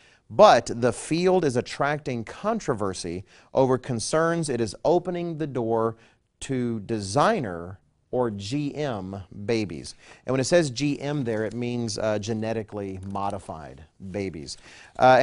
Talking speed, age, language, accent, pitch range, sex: 120 wpm, 40-59, English, American, 115-145 Hz, male